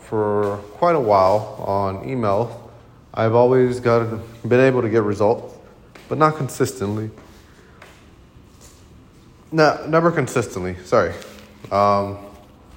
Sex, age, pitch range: male, 20-39, 100-125 Hz